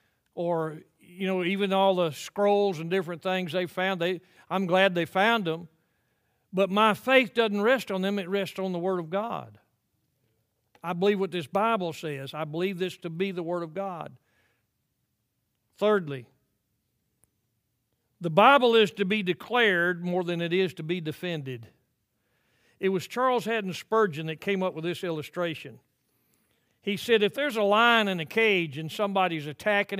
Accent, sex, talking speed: American, male, 170 wpm